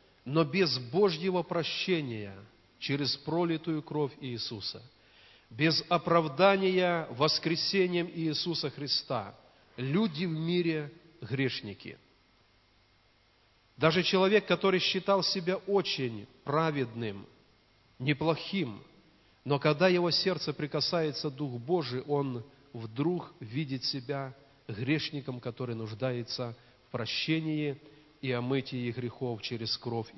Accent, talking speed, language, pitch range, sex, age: native, 90 wpm, Russian, 120-165 Hz, male, 40-59